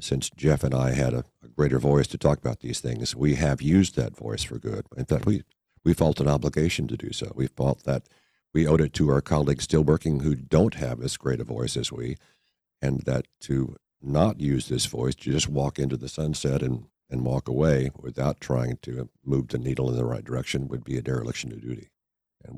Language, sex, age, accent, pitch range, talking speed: English, male, 60-79, American, 65-75 Hz, 225 wpm